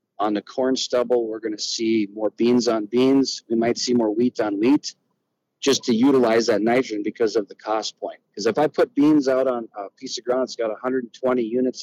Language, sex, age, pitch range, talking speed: English, male, 40-59, 115-140 Hz, 220 wpm